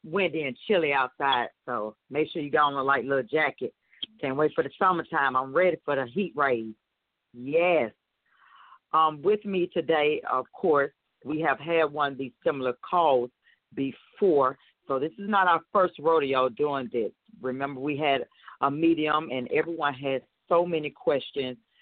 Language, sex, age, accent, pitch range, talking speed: English, female, 40-59, American, 130-160 Hz, 170 wpm